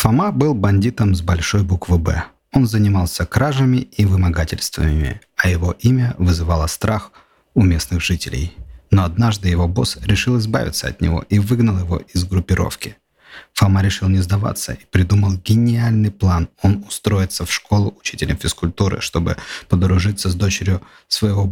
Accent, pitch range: native, 90-110 Hz